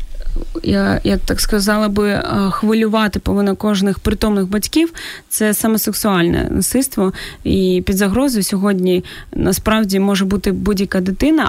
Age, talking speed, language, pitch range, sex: 20-39, 115 wpm, Ukrainian, 195-235 Hz, female